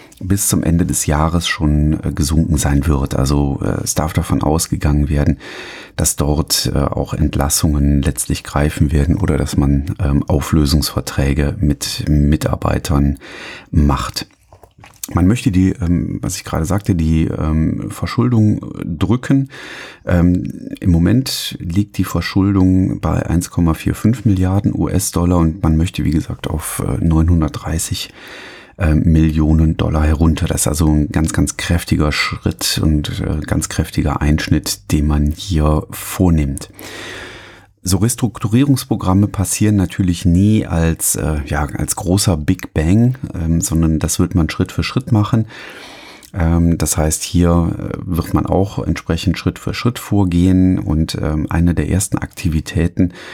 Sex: male